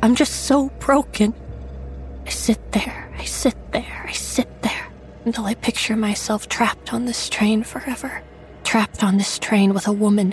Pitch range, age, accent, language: 195-215 Hz, 20-39, American, English